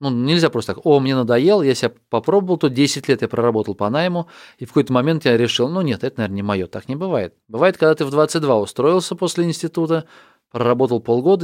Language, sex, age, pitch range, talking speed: Russian, male, 20-39, 110-135 Hz, 220 wpm